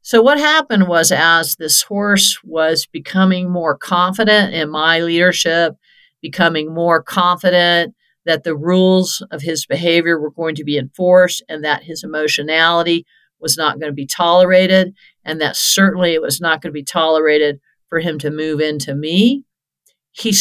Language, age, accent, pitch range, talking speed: English, 50-69, American, 155-195 Hz, 160 wpm